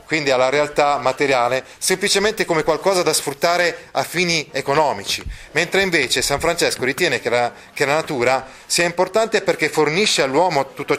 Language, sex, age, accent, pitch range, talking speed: Italian, male, 30-49, native, 135-175 Hz, 150 wpm